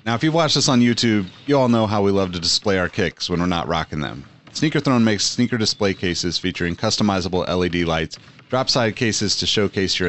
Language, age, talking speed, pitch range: English, 30-49, 225 wpm, 95-125 Hz